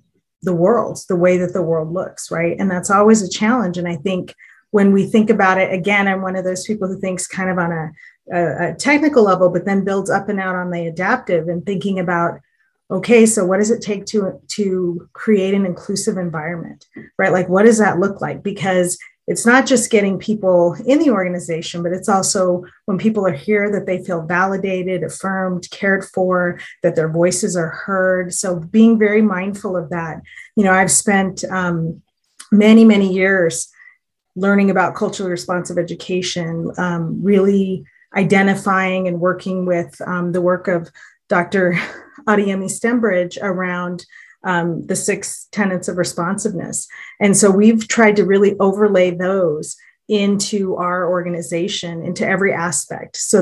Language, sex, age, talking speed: English, female, 30-49, 170 wpm